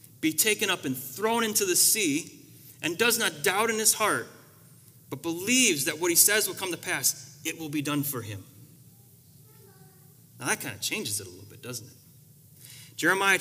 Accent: American